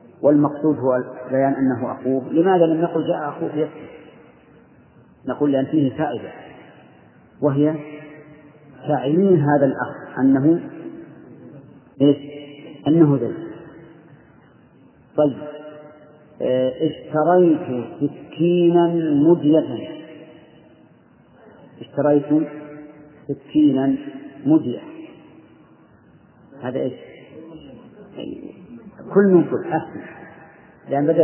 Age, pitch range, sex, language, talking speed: 40-59, 135-165 Hz, male, Arabic, 75 wpm